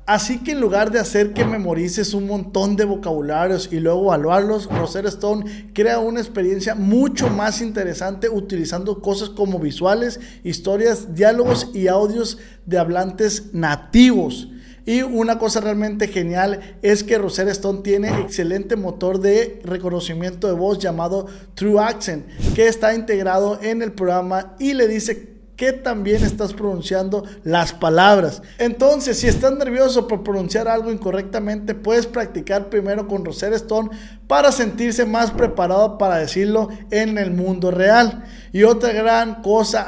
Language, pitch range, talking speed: Spanish, 190-225 Hz, 145 wpm